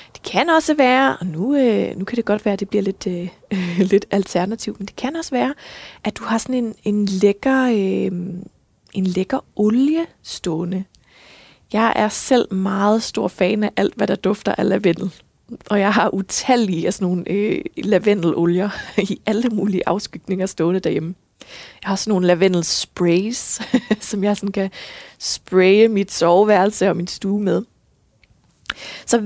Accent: native